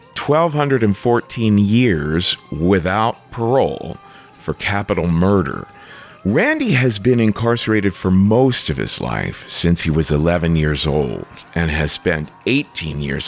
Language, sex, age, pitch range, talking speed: English, male, 50-69, 85-120 Hz, 120 wpm